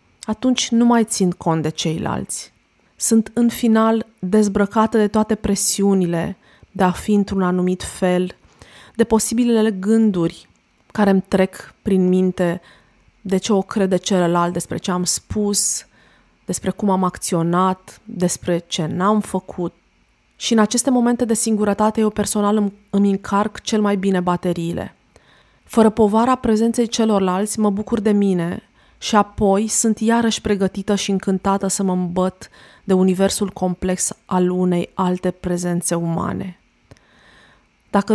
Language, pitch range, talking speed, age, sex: Romanian, 185-220 Hz, 135 wpm, 20-39, female